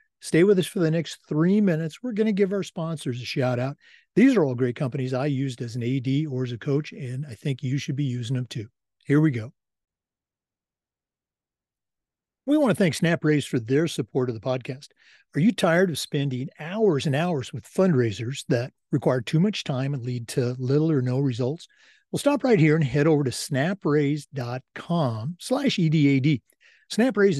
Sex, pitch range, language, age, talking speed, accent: male, 130-175 Hz, English, 50-69, 195 wpm, American